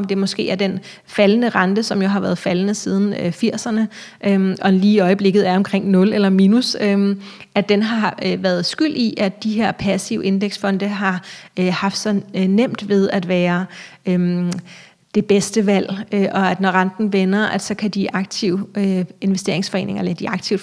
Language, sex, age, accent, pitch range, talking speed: Danish, female, 30-49, native, 195-220 Hz, 165 wpm